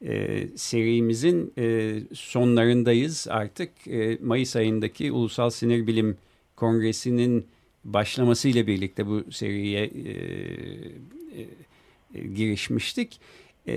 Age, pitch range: 50-69, 115-155 Hz